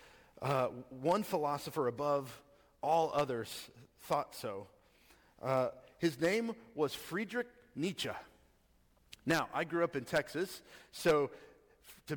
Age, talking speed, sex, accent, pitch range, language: 40-59, 105 wpm, male, American, 130-175 Hz, English